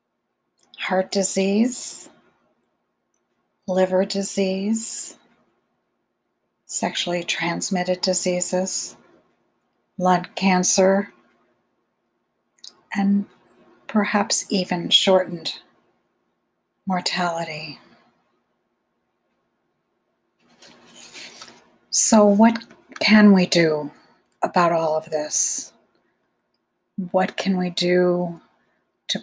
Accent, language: American, English